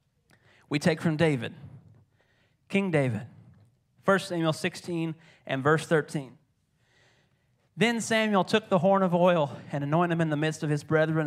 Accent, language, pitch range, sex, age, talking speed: American, English, 135-175 Hz, male, 30-49, 150 wpm